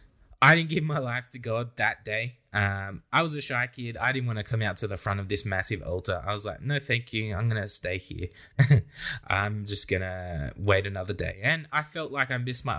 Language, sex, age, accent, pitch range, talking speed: English, male, 20-39, Australian, 100-120 Hz, 250 wpm